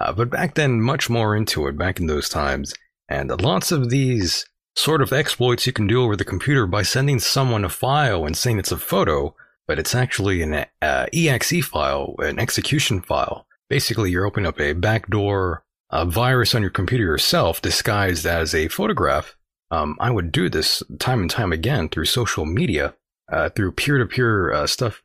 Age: 30-49